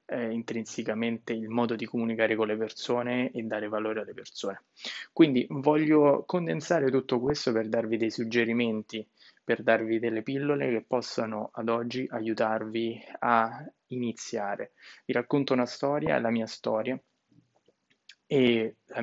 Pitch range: 110-130 Hz